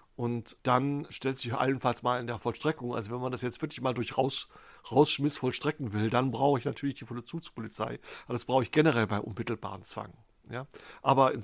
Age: 40-59